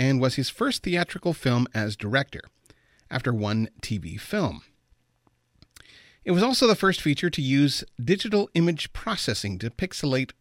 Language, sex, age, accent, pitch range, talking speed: English, male, 40-59, American, 105-150 Hz, 145 wpm